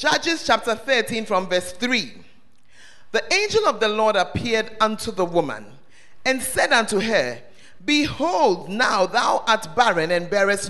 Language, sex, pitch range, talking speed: English, male, 205-270 Hz, 145 wpm